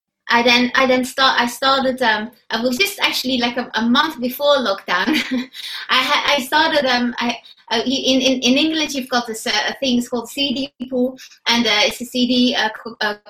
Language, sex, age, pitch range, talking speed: English, female, 20-39, 210-250 Hz, 210 wpm